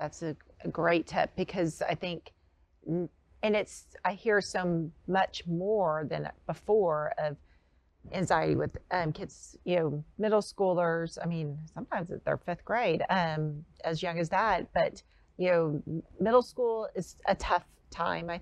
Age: 40-59